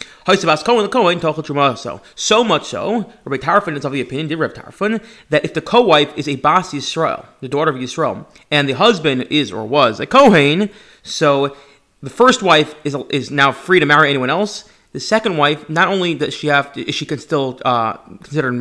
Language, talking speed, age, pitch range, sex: English, 185 wpm, 30-49, 135-170 Hz, male